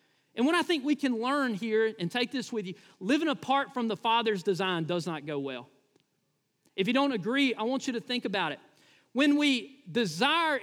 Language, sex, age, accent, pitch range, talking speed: English, male, 40-59, American, 230-295 Hz, 210 wpm